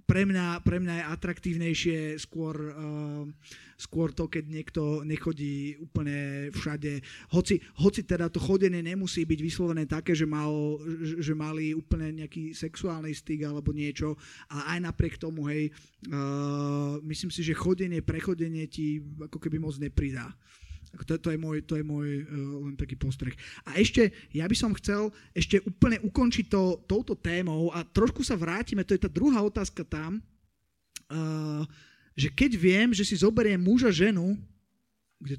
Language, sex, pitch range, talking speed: Slovak, male, 150-200 Hz, 160 wpm